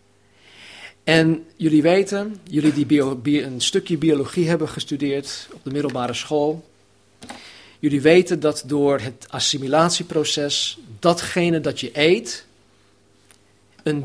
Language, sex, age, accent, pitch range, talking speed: Dutch, male, 40-59, Dutch, 100-165 Hz, 105 wpm